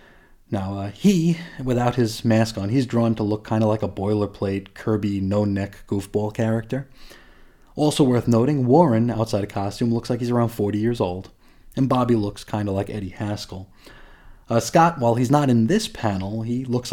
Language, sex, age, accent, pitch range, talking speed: English, male, 30-49, American, 100-135 Hz, 185 wpm